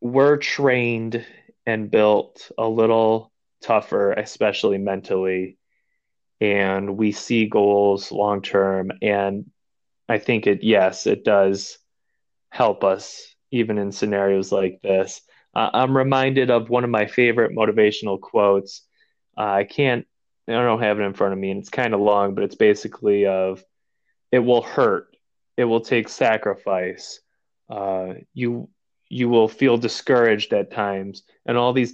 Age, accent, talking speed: 20-39, American, 145 wpm